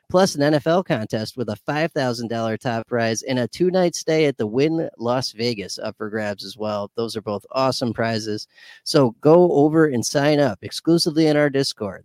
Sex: male